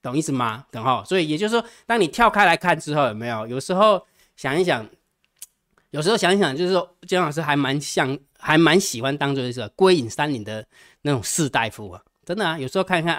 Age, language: 20-39, Chinese